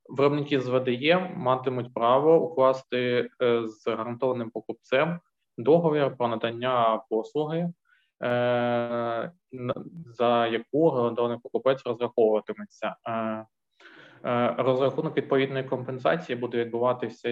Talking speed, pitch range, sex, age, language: 80 wpm, 115-130 Hz, male, 20-39, Ukrainian